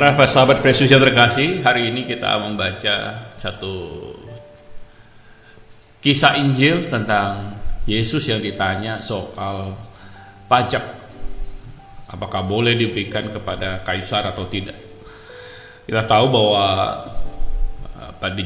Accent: native